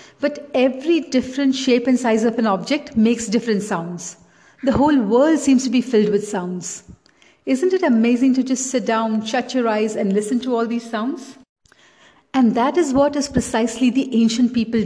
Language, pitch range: English, 220-270 Hz